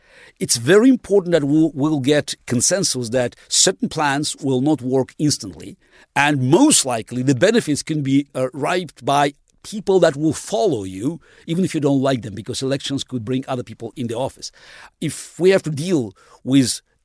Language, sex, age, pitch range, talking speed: English, male, 50-69, 135-180 Hz, 185 wpm